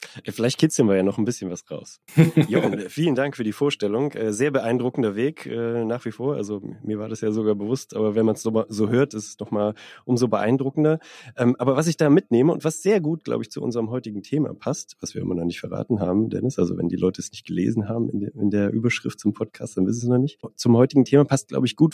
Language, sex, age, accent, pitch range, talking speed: German, male, 30-49, German, 110-140 Hz, 245 wpm